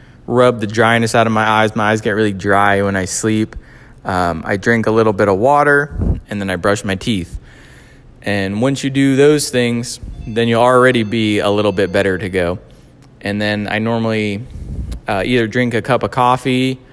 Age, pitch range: 20-39, 100-125 Hz